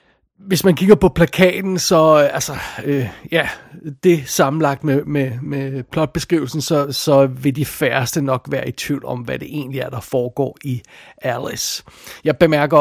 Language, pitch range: Danish, 145-180 Hz